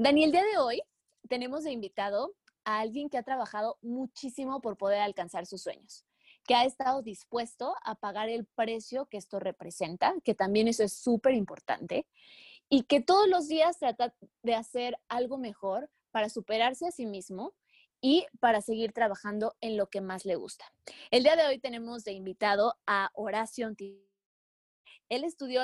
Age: 20-39